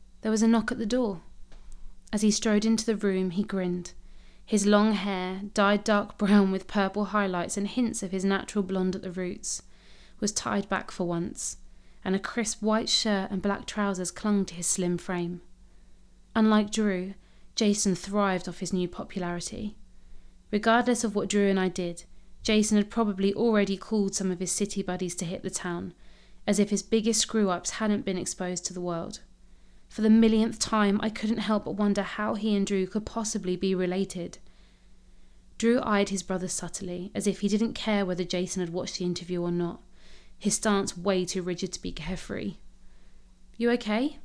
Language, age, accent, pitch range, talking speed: English, 20-39, British, 180-215 Hz, 185 wpm